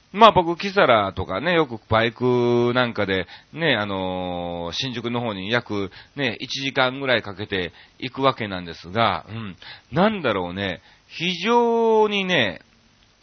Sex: male